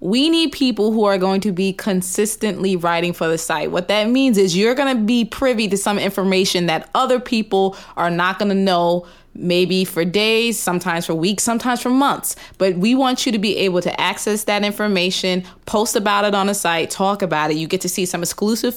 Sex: female